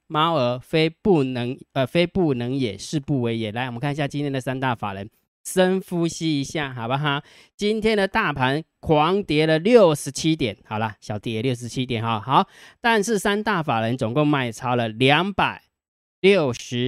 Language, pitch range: Chinese, 125-175 Hz